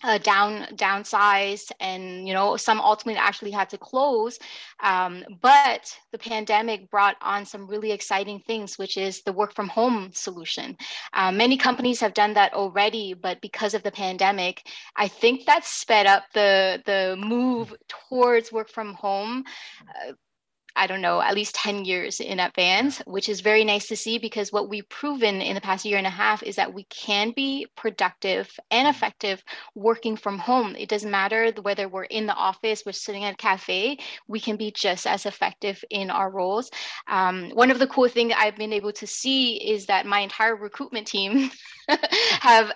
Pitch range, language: 200-230 Hz, English